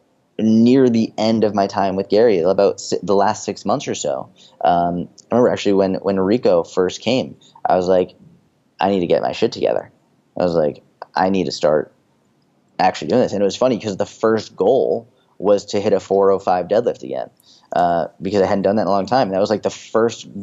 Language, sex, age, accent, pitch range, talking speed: Polish, male, 20-39, American, 95-110 Hz, 220 wpm